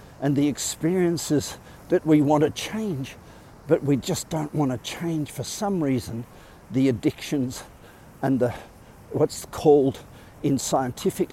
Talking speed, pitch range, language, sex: 140 wpm, 115-155 Hz, English, male